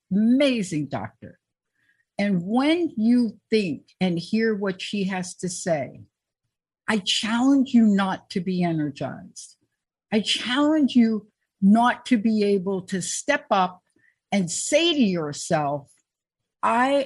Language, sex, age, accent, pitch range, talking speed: English, female, 60-79, American, 185-235 Hz, 125 wpm